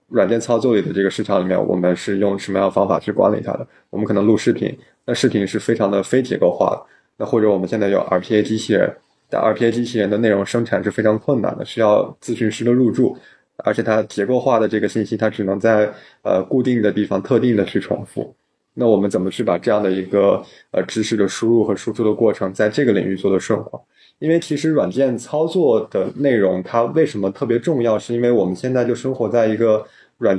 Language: Chinese